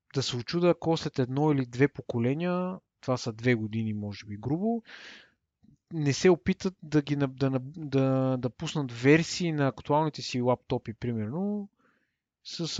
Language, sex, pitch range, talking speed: Bulgarian, male, 125-165 Hz, 155 wpm